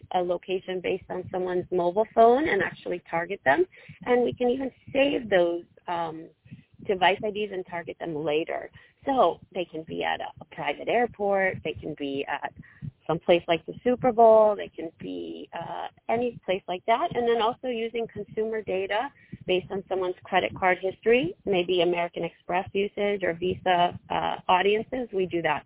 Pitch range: 170-215 Hz